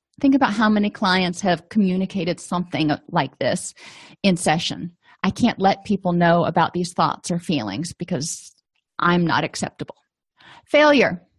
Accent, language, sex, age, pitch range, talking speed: American, English, female, 30-49, 180-225 Hz, 140 wpm